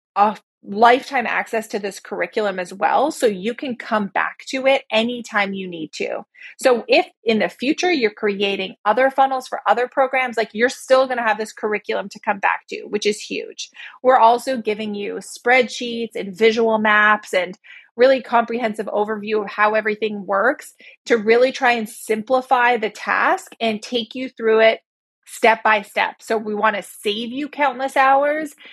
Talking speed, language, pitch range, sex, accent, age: 180 wpm, English, 210-255 Hz, female, American, 30-49